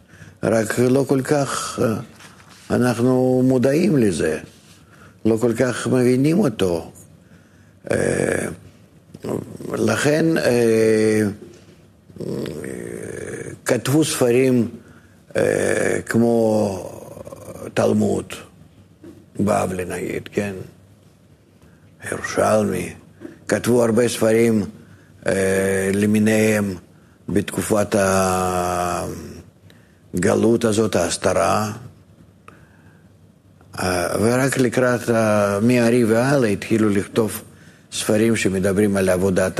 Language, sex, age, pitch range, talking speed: Hebrew, male, 50-69, 95-120 Hz, 60 wpm